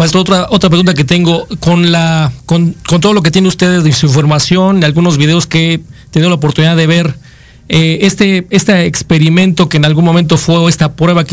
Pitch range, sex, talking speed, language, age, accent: 155-180 Hz, male, 215 wpm, Spanish, 40-59, Mexican